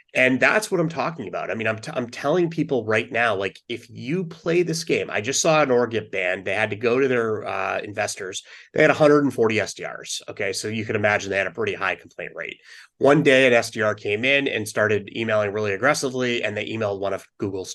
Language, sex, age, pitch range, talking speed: English, male, 30-49, 105-140 Hz, 235 wpm